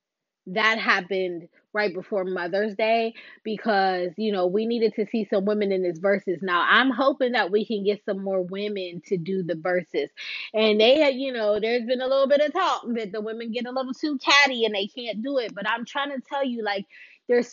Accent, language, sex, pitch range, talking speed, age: American, English, female, 200-260 Hz, 225 wpm, 20-39